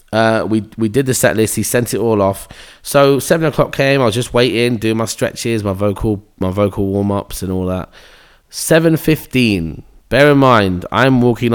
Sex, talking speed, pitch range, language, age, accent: male, 205 wpm, 100-130 Hz, English, 20-39, British